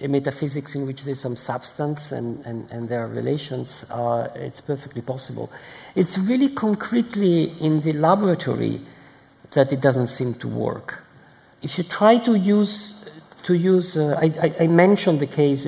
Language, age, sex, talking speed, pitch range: English, 50-69, male, 155 wpm, 135-175 Hz